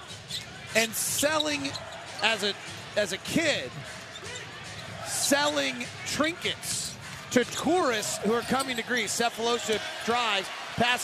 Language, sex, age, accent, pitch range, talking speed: English, male, 40-59, American, 210-255 Hz, 105 wpm